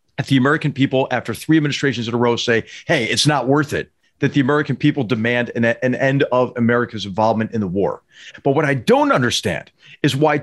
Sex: male